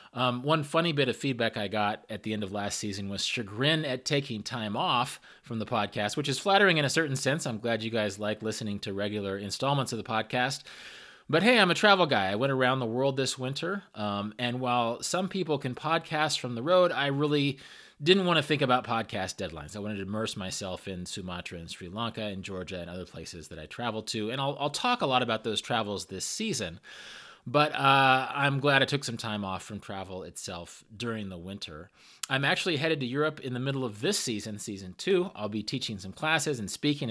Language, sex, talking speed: English, male, 225 wpm